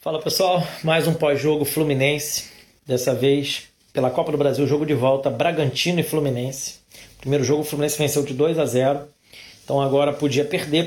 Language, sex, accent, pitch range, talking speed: Portuguese, male, Brazilian, 135-160 Hz, 170 wpm